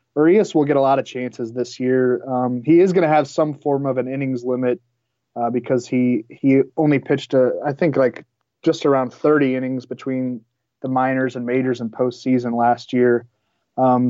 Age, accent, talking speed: 20-39, American, 190 wpm